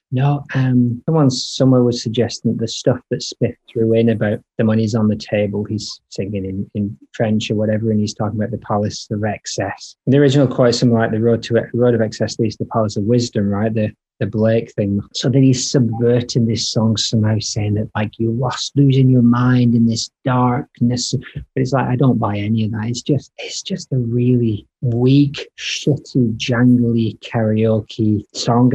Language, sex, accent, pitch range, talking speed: English, male, British, 115-135 Hz, 195 wpm